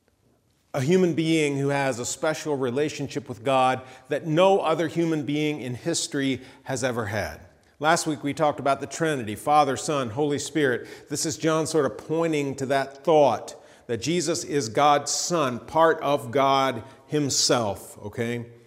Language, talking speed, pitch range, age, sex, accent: English, 160 wpm, 115-155 Hz, 40-59, male, American